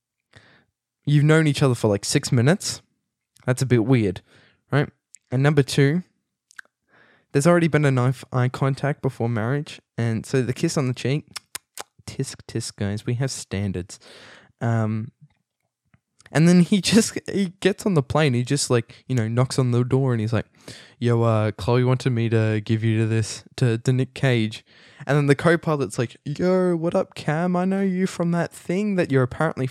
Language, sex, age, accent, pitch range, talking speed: English, male, 10-29, Australian, 110-150 Hz, 185 wpm